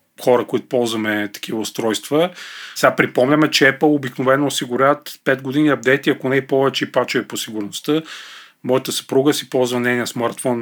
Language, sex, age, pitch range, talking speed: Bulgarian, male, 40-59, 125-150 Hz, 155 wpm